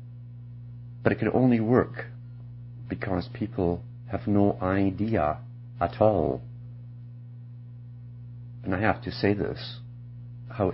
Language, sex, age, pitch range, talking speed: English, male, 50-69, 100-120 Hz, 105 wpm